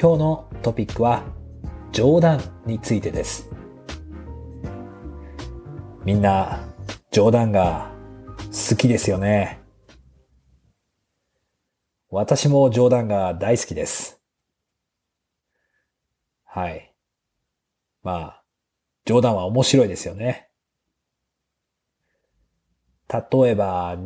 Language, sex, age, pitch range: Japanese, male, 40-59, 95-125 Hz